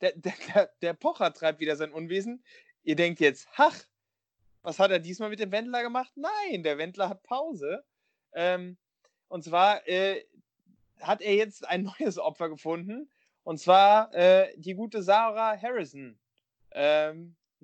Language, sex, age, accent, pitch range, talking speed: German, male, 30-49, German, 155-200 Hz, 145 wpm